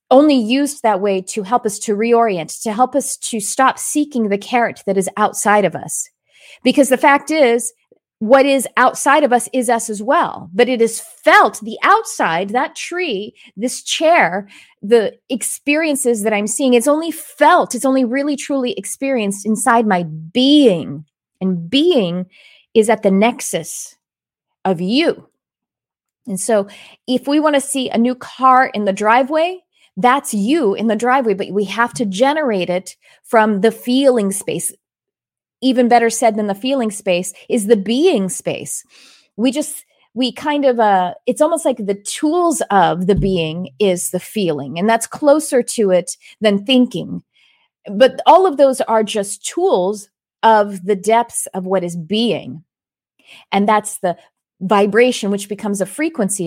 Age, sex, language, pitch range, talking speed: 30-49, female, English, 200-265 Hz, 165 wpm